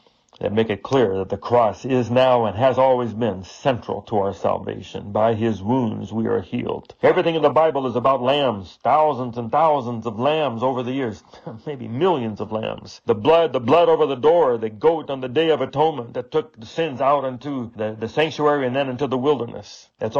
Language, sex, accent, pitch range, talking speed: English, male, American, 120-150 Hz, 210 wpm